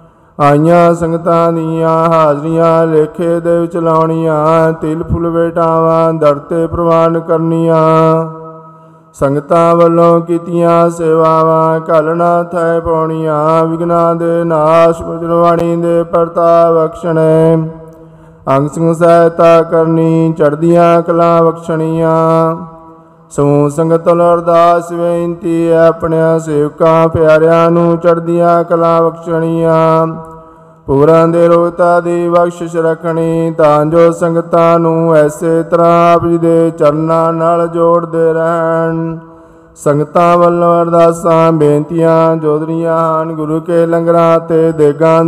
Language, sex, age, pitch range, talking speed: Punjabi, male, 50-69, 160-170 Hz, 90 wpm